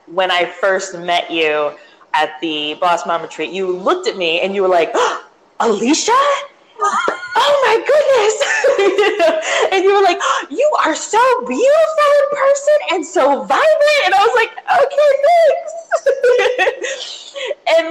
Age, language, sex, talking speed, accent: 20-39, English, female, 140 wpm, American